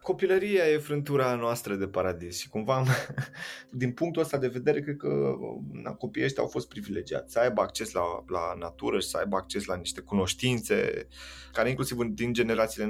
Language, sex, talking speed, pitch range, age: Romanian, male, 170 wpm, 90-125 Hz, 20-39